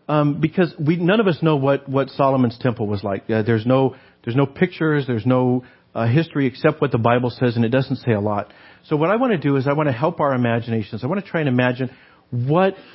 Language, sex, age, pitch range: English, male, 50-69, 120-150 Hz